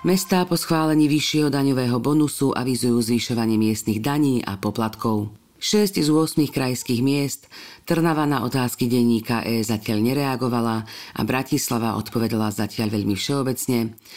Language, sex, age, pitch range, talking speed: Slovak, female, 40-59, 115-150 Hz, 125 wpm